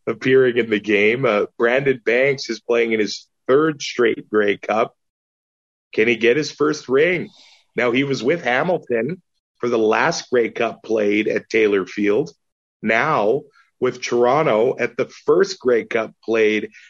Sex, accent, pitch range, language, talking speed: male, American, 115-185 Hz, English, 155 wpm